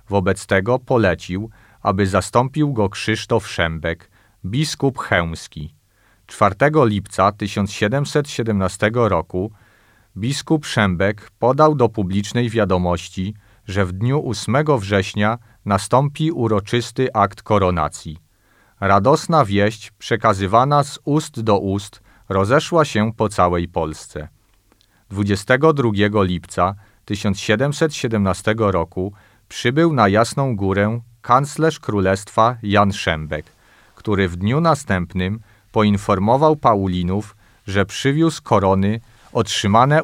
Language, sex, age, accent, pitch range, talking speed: Polish, male, 40-59, native, 95-120 Hz, 95 wpm